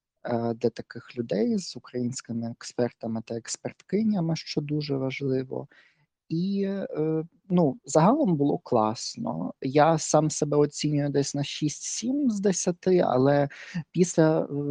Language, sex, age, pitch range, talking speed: Ukrainian, male, 20-39, 120-150 Hz, 110 wpm